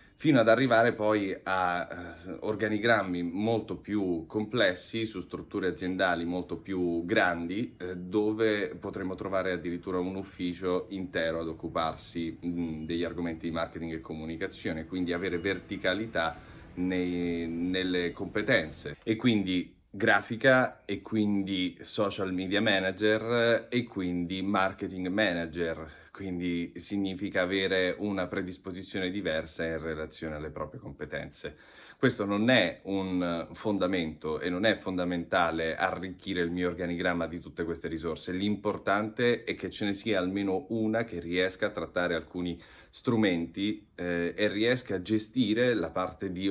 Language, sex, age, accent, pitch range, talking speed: Italian, male, 30-49, native, 85-100 Hz, 125 wpm